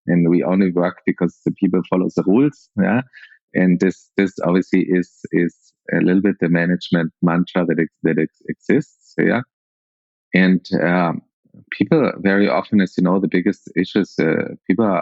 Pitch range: 80-90 Hz